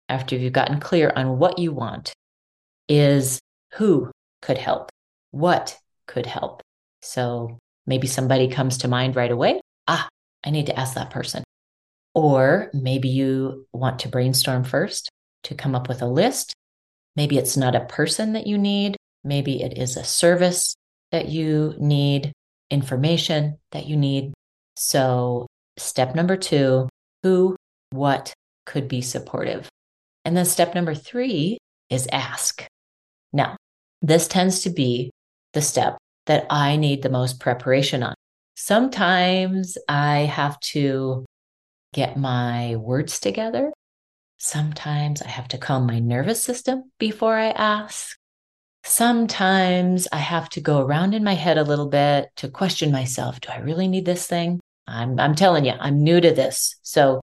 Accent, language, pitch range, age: American, English, 130-170 Hz, 30-49